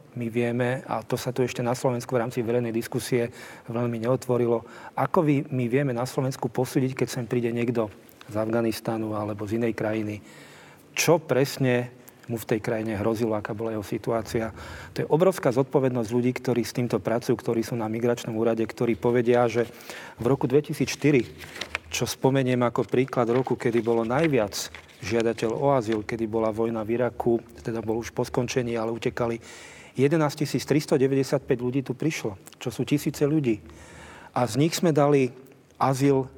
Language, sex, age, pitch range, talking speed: Slovak, male, 40-59, 115-145 Hz, 165 wpm